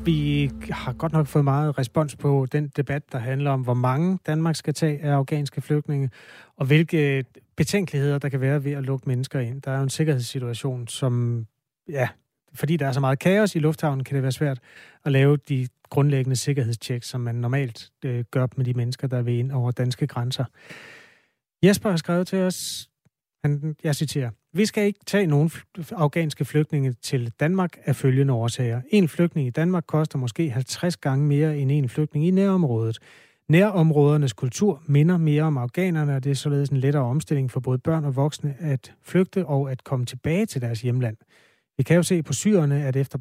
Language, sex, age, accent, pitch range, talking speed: Danish, male, 30-49, native, 130-155 Hz, 190 wpm